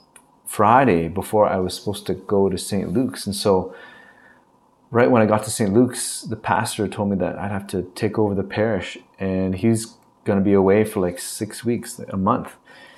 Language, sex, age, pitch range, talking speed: English, male, 30-49, 100-120 Hz, 200 wpm